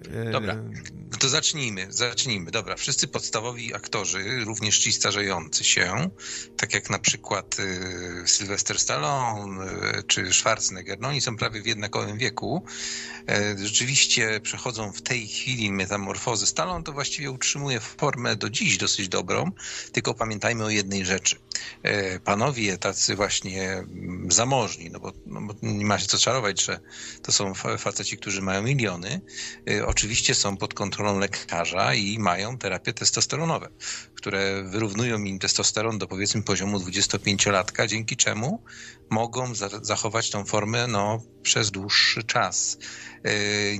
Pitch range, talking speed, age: 100-115 Hz, 130 wpm, 50-69